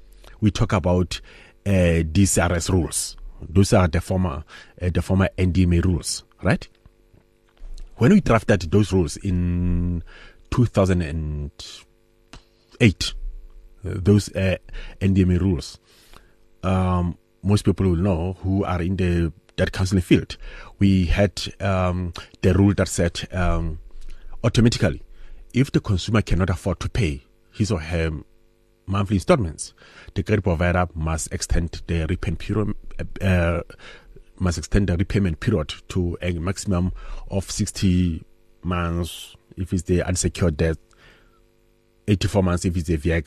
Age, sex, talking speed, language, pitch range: 30-49, male, 130 wpm, English, 90-105 Hz